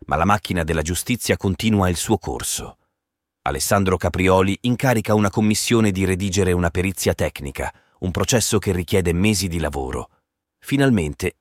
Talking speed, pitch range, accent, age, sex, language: 140 wpm, 85-105 Hz, native, 30-49, male, Italian